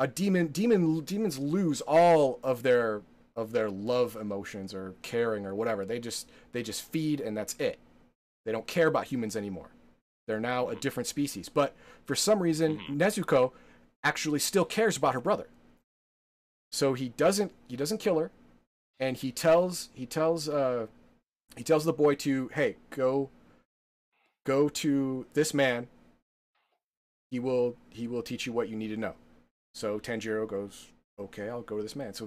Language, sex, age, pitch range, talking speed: English, male, 30-49, 115-160 Hz, 170 wpm